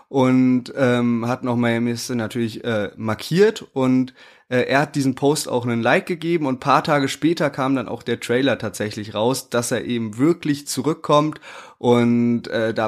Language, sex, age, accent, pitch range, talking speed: German, male, 20-39, German, 125-160 Hz, 175 wpm